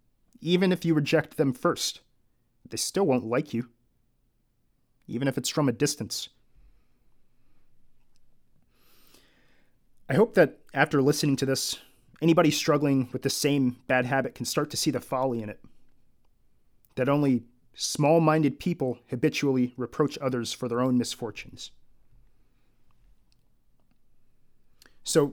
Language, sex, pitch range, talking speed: English, male, 125-155 Hz, 120 wpm